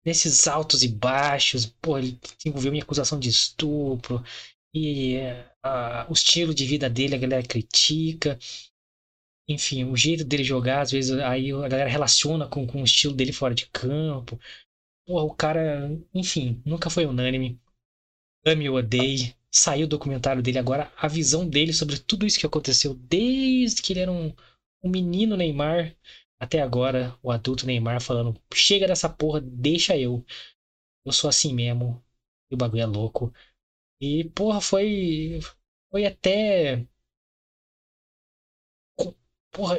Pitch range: 130-165 Hz